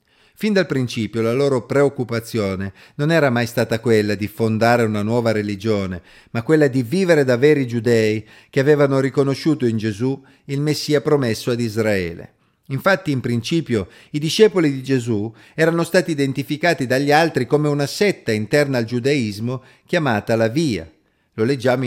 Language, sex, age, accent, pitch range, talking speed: Italian, male, 50-69, native, 115-150 Hz, 155 wpm